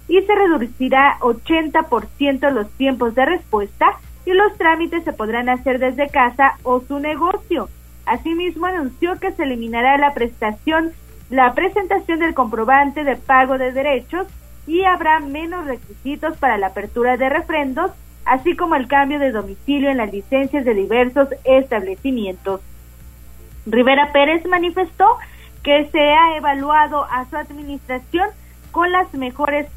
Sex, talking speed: female, 135 wpm